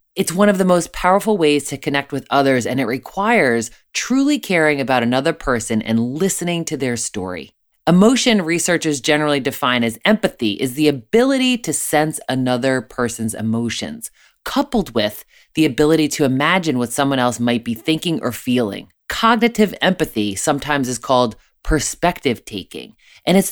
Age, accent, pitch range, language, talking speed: 20-39, American, 125-200 Hz, English, 155 wpm